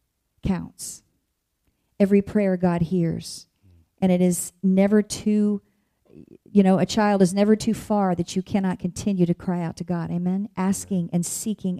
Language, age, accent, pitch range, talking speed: English, 40-59, American, 175-200 Hz, 160 wpm